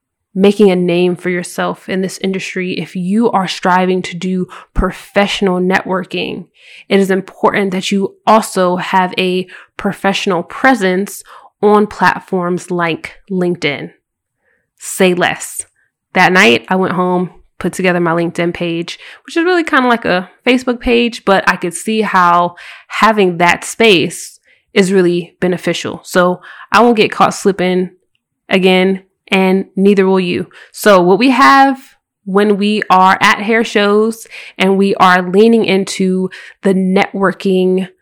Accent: American